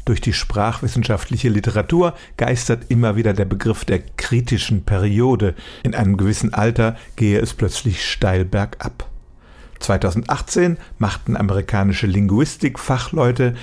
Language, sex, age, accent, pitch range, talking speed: German, male, 50-69, German, 100-125 Hz, 110 wpm